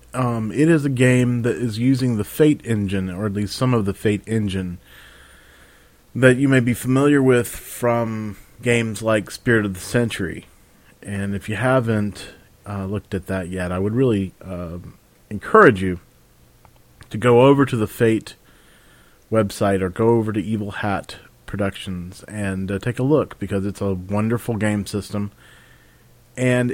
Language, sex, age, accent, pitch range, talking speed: English, male, 40-59, American, 100-120 Hz, 165 wpm